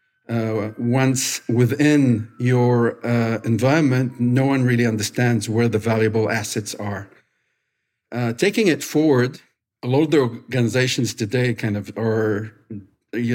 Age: 50-69